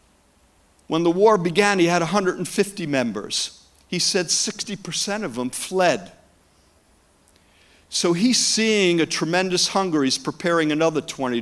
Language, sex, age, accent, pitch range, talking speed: English, male, 50-69, American, 105-165 Hz, 125 wpm